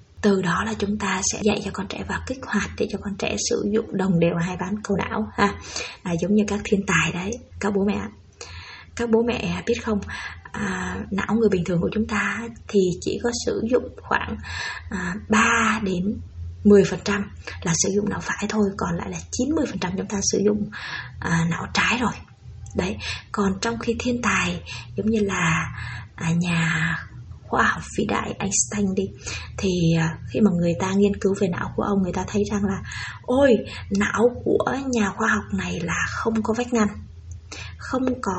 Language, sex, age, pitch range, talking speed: Vietnamese, female, 20-39, 175-215 Hz, 195 wpm